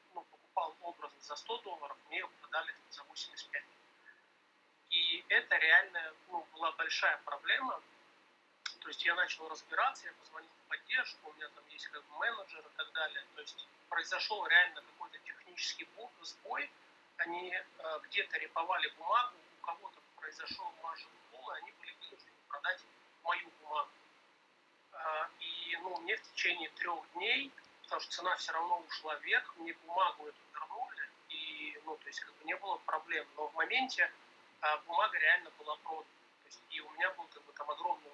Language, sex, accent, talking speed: Russian, male, native, 170 wpm